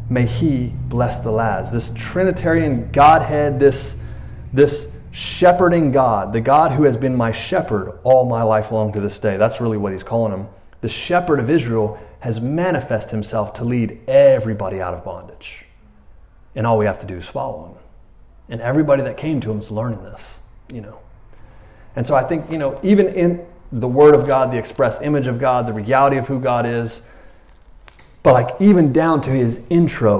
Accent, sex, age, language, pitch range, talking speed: American, male, 30-49, English, 110-135 Hz, 190 wpm